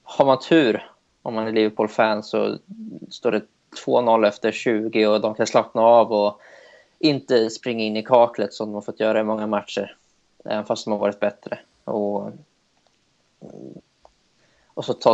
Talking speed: 170 wpm